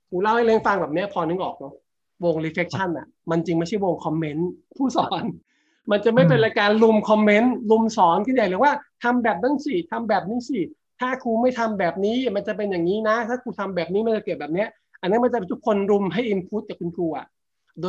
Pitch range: 155-210 Hz